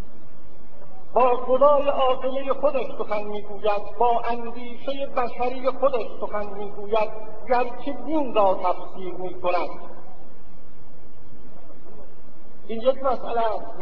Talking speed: 95 wpm